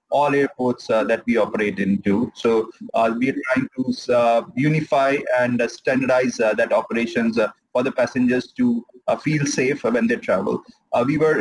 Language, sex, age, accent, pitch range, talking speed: English, male, 30-49, Indian, 120-145 Hz, 185 wpm